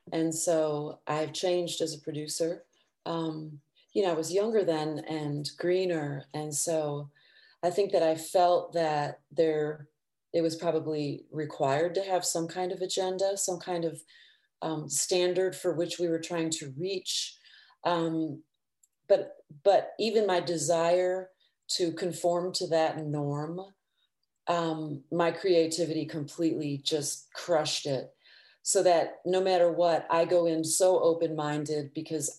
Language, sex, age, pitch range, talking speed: English, female, 30-49, 155-185 Hz, 140 wpm